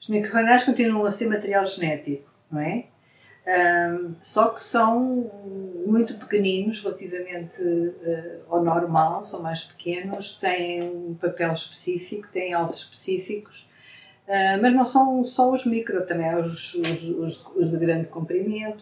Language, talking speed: Portuguese, 125 wpm